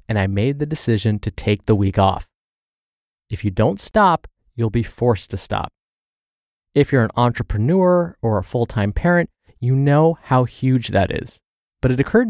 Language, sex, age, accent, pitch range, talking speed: English, male, 20-39, American, 110-150 Hz, 175 wpm